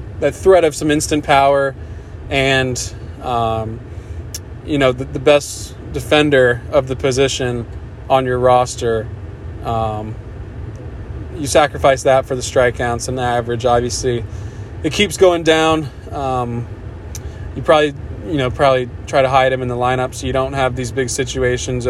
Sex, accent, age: male, American, 20-39